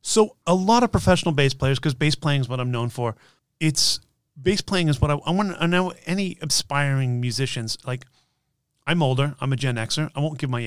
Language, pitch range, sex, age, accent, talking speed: English, 115-145 Hz, male, 30-49, American, 220 wpm